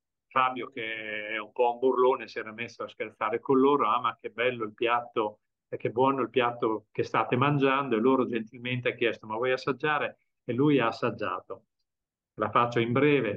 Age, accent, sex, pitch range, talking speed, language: 40-59, native, male, 110-140 Hz, 195 wpm, Italian